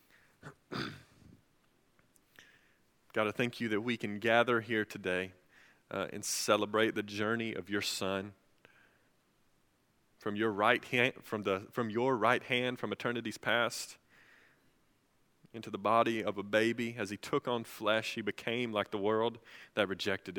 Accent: American